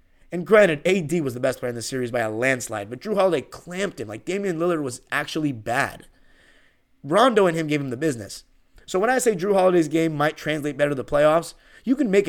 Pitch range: 130-180 Hz